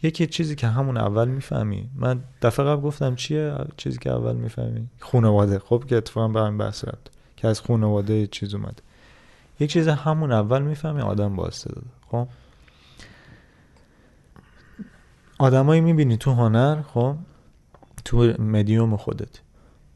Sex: male